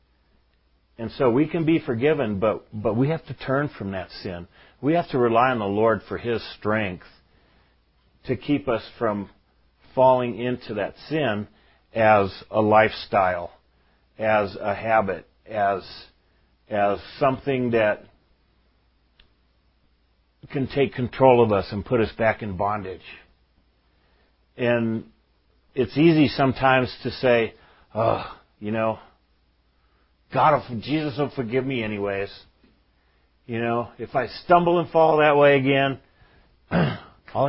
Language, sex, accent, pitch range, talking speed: English, male, American, 75-120 Hz, 125 wpm